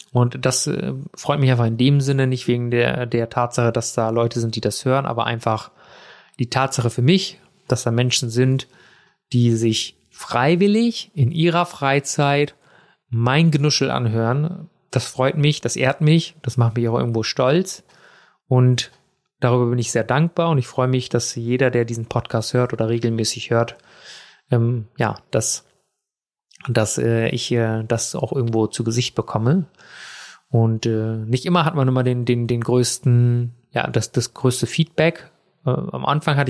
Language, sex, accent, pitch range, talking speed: German, male, German, 120-145 Hz, 170 wpm